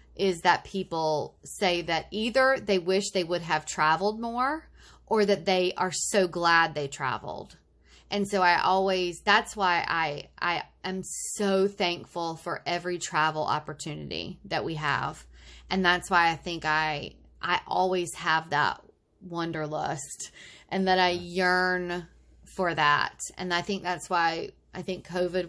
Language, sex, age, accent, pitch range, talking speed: English, female, 30-49, American, 165-190 Hz, 150 wpm